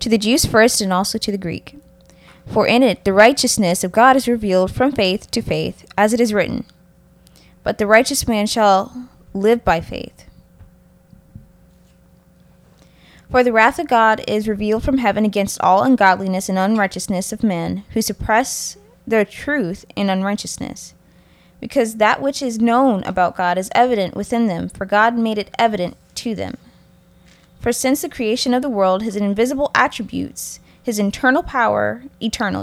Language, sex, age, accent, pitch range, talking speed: English, female, 20-39, American, 200-240 Hz, 160 wpm